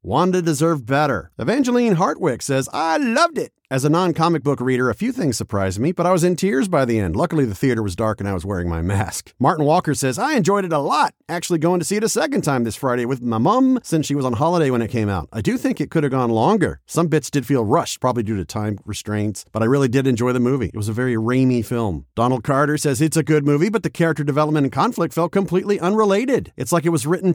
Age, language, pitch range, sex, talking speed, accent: 40-59, English, 120-170 Hz, male, 265 wpm, American